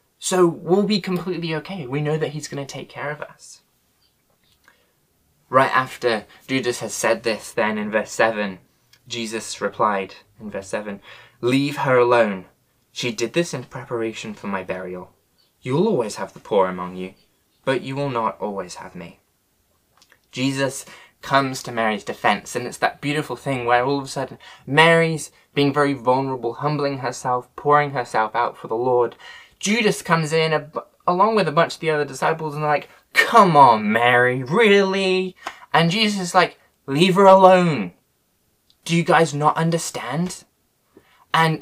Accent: British